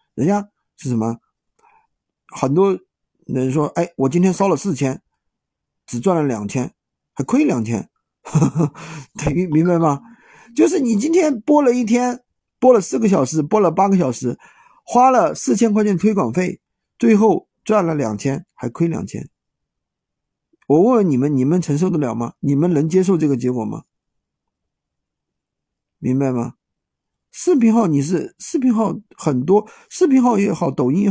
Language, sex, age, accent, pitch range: Chinese, male, 50-69, native, 140-225 Hz